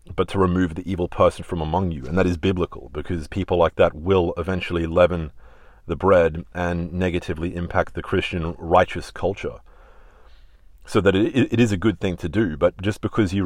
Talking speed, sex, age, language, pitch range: 190 wpm, male, 30-49, English, 80-95 Hz